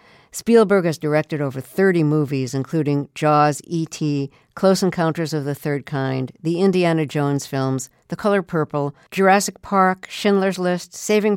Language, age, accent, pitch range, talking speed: English, 50-69, American, 145-195 Hz, 145 wpm